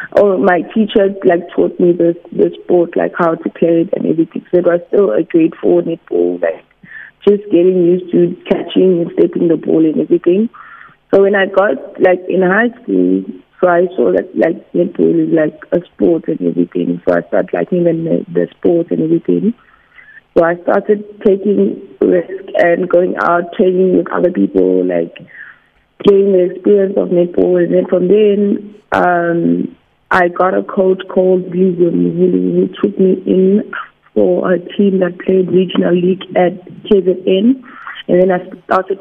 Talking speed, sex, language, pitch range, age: 170 wpm, female, English, 170-195 Hz, 20-39